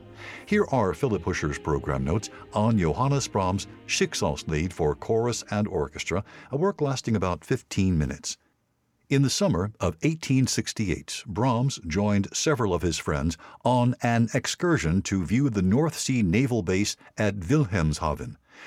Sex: male